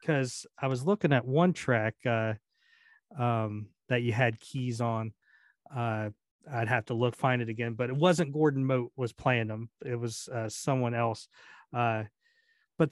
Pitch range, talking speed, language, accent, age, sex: 120-170 Hz, 170 wpm, English, American, 40-59, male